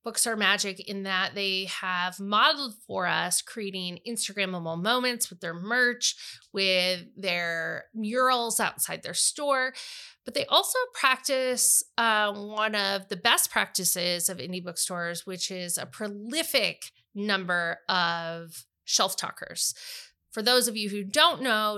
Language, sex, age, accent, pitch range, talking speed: English, female, 30-49, American, 180-235 Hz, 140 wpm